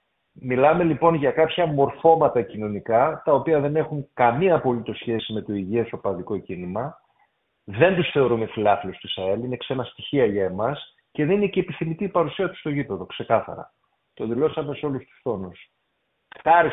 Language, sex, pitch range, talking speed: Greek, male, 115-155 Hz, 170 wpm